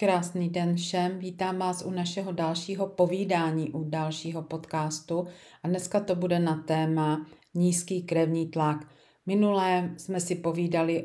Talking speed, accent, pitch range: 135 wpm, native, 160-180 Hz